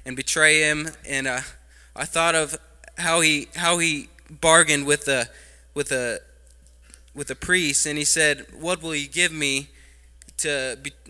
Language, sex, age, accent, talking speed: English, male, 20-39, American, 160 wpm